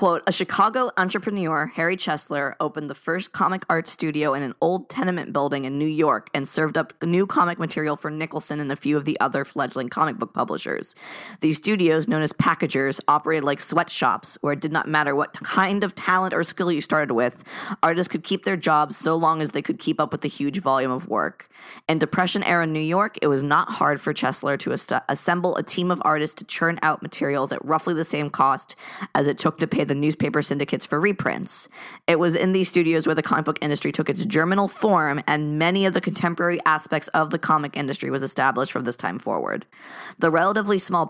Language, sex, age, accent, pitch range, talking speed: English, female, 20-39, American, 145-180 Hz, 215 wpm